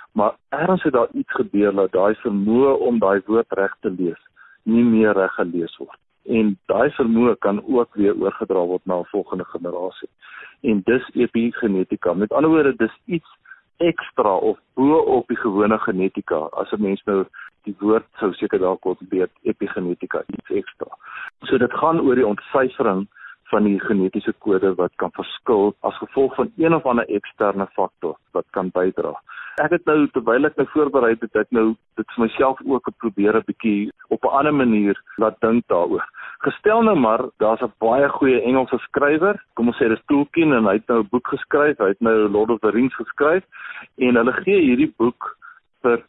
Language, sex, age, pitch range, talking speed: Swedish, male, 50-69, 105-140 Hz, 185 wpm